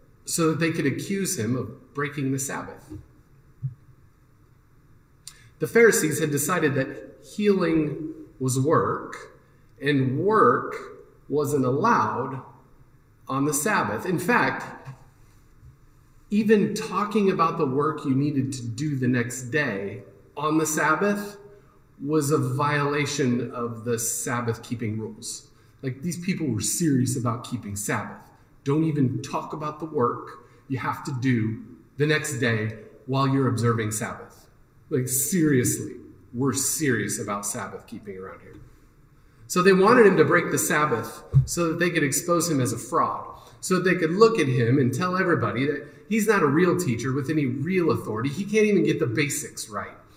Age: 40-59